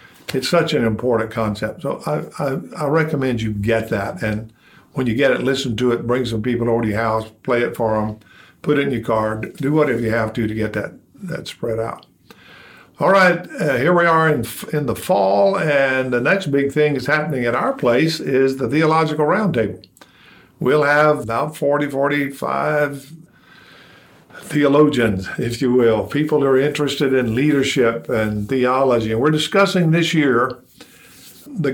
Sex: male